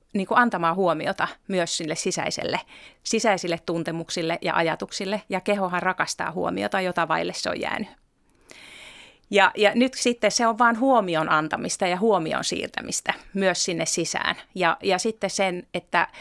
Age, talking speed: 30-49, 140 wpm